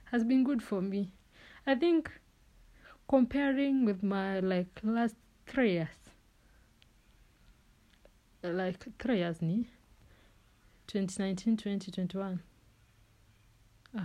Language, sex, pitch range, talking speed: English, female, 180-230 Hz, 85 wpm